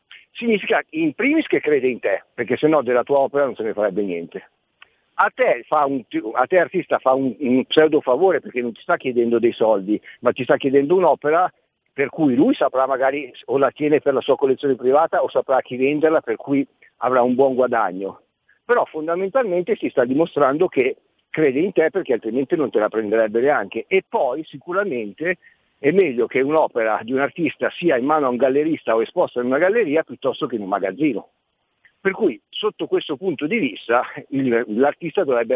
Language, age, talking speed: Italian, 50-69, 195 wpm